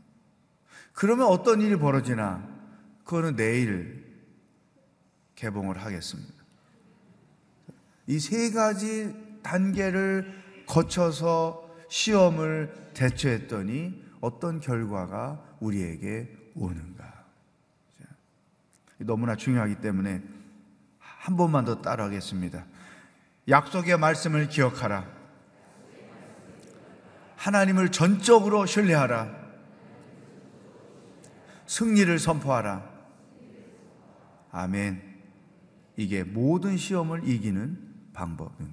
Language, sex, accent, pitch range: Korean, male, native, 115-165 Hz